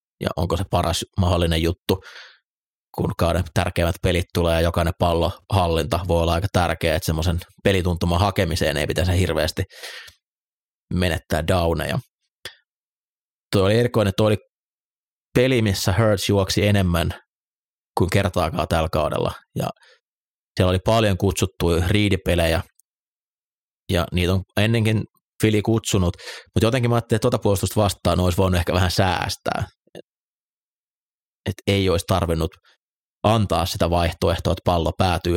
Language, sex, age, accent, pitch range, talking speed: Finnish, male, 30-49, native, 85-100 Hz, 130 wpm